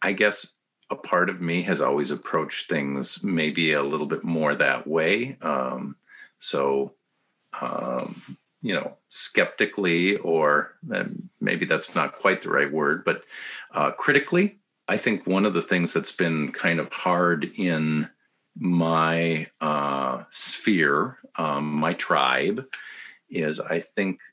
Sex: male